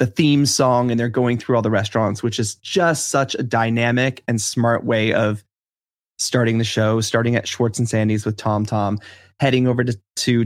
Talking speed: 200 wpm